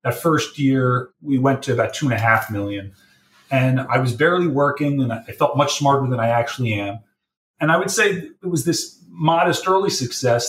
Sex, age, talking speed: male, 30-49, 205 wpm